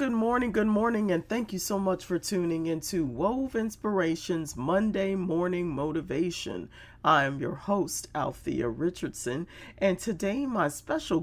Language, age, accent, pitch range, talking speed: English, 40-59, American, 155-215 Hz, 145 wpm